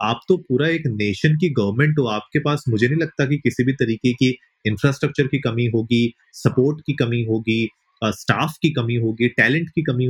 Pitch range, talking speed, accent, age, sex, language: 120-145 Hz, 200 wpm, native, 30-49, male, Hindi